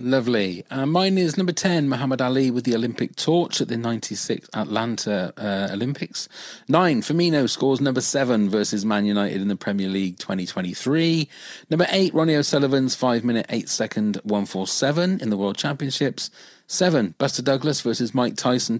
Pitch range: 110-150 Hz